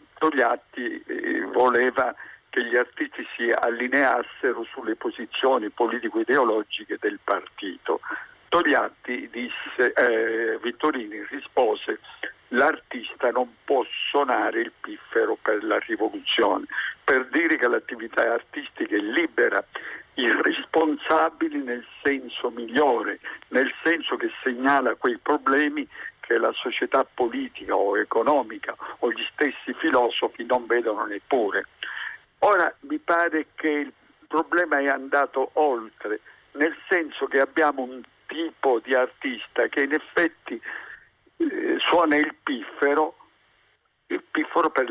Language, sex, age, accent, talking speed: Italian, male, 50-69, native, 110 wpm